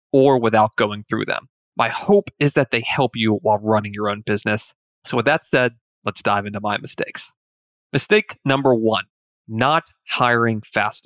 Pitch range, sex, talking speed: 110-135 Hz, male, 175 wpm